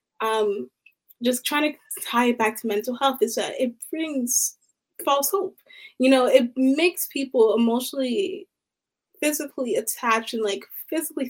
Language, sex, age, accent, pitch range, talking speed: English, female, 20-39, American, 230-380 Hz, 145 wpm